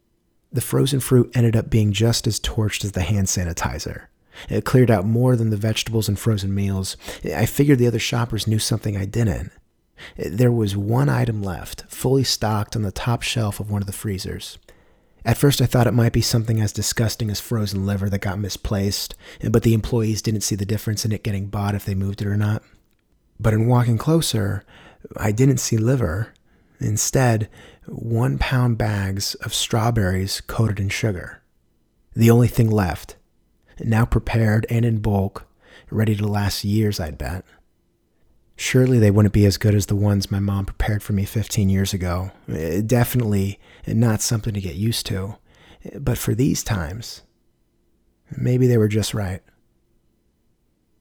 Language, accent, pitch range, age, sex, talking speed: English, American, 100-115 Hz, 30-49, male, 170 wpm